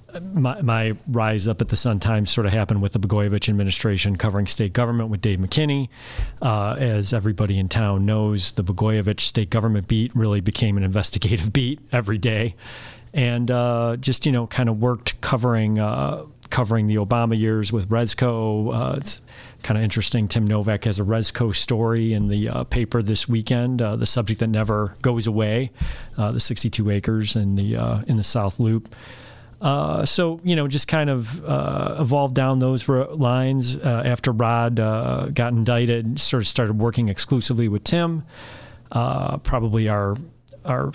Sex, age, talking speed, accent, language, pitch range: male, 40-59, 175 wpm, American, English, 105-120 Hz